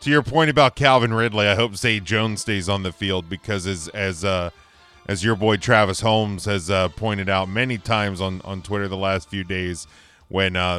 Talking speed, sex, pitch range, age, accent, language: 210 wpm, male, 90-115 Hz, 40-59, American, English